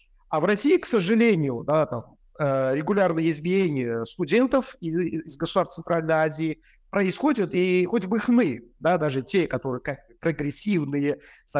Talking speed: 135 wpm